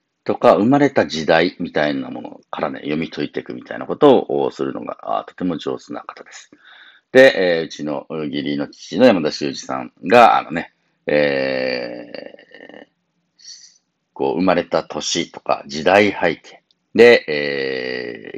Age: 50-69